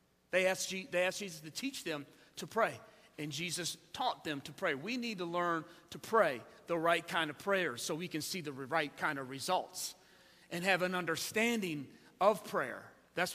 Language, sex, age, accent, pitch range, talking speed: English, male, 40-59, American, 150-200 Hz, 185 wpm